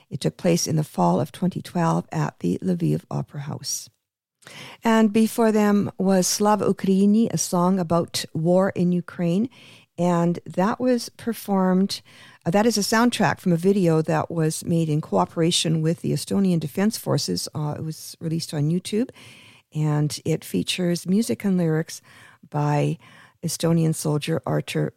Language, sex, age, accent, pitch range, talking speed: English, female, 50-69, American, 150-195 Hz, 150 wpm